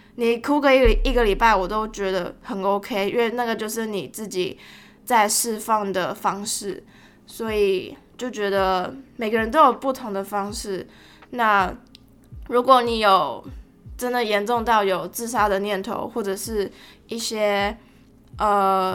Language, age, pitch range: Chinese, 20-39, 195-230 Hz